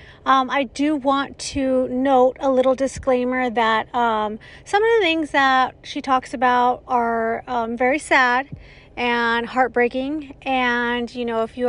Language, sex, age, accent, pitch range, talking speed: English, female, 40-59, American, 230-265 Hz, 155 wpm